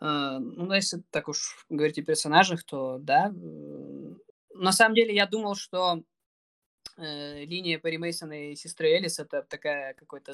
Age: 20-39